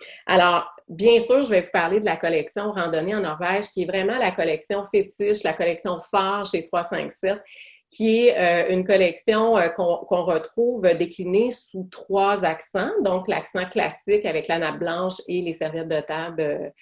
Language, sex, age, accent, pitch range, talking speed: French, female, 30-49, Canadian, 170-210 Hz, 165 wpm